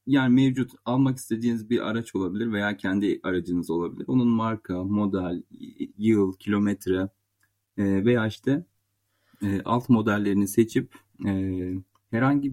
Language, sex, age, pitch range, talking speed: Turkish, male, 40-59, 100-115 Hz, 105 wpm